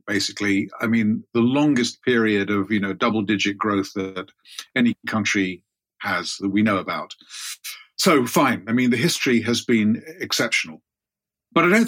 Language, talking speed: English, 160 wpm